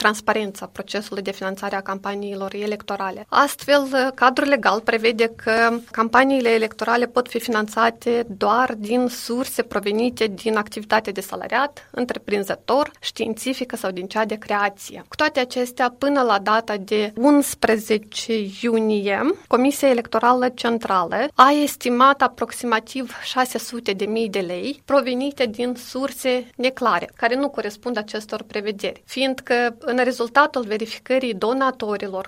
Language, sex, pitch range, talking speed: Romanian, female, 215-255 Hz, 125 wpm